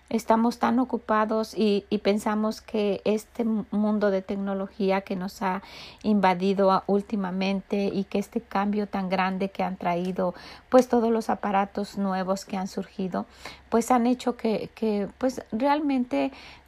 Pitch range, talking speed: 195-230 Hz, 150 wpm